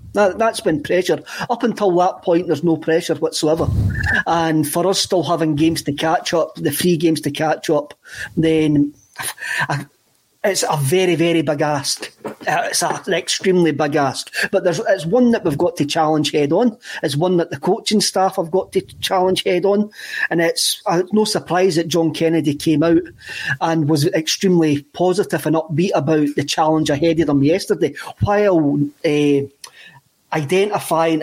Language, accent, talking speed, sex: English, British, 165 wpm, male